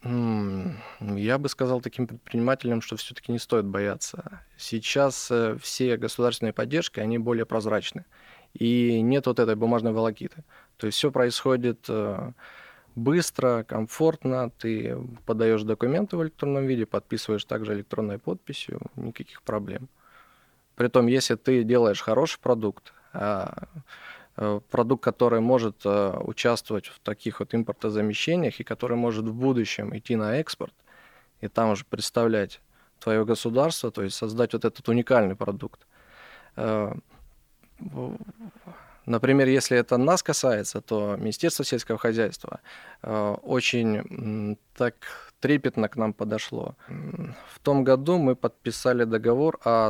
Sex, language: male, Russian